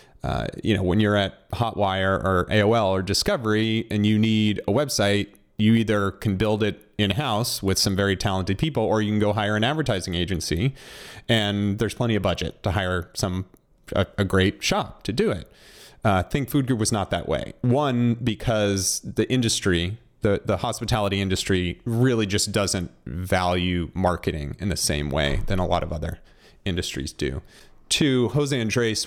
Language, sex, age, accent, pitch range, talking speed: English, male, 30-49, American, 95-120 Hz, 180 wpm